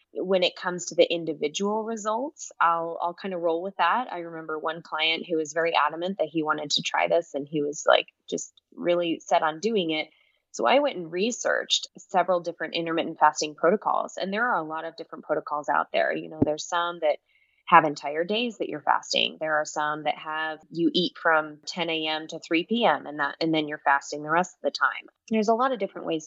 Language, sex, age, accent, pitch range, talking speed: English, female, 20-39, American, 160-200 Hz, 225 wpm